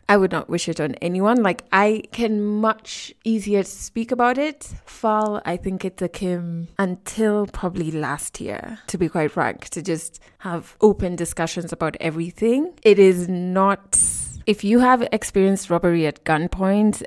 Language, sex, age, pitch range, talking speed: English, female, 20-39, 175-220 Hz, 165 wpm